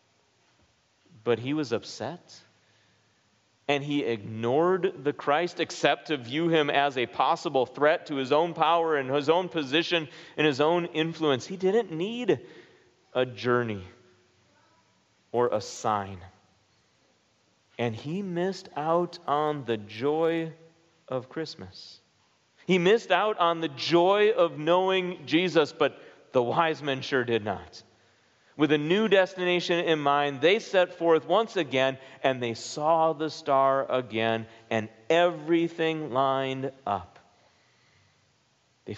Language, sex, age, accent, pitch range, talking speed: English, male, 40-59, American, 115-165 Hz, 130 wpm